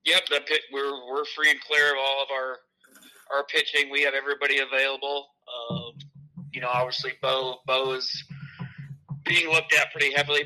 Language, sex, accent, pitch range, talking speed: English, male, American, 130-145 Hz, 170 wpm